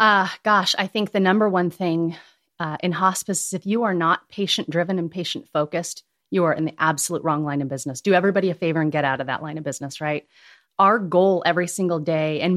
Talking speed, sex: 230 wpm, female